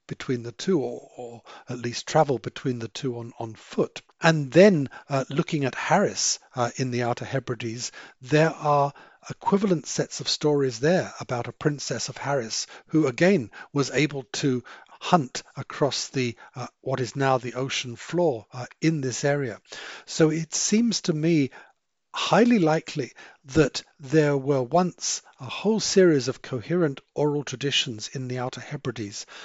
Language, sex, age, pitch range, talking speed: English, male, 50-69, 125-155 Hz, 160 wpm